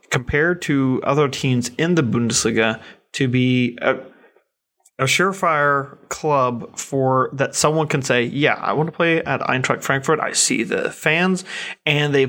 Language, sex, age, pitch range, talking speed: English, male, 30-49, 130-155 Hz, 155 wpm